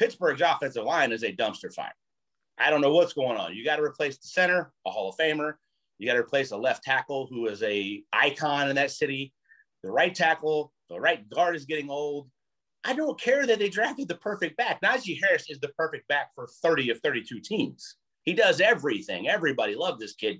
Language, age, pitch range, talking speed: English, 30-49, 135-180 Hz, 215 wpm